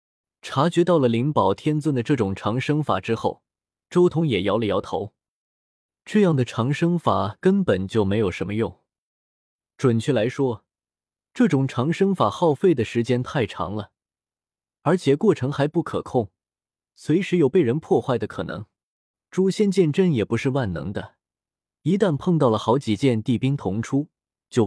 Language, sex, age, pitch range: Chinese, male, 20-39, 110-170 Hz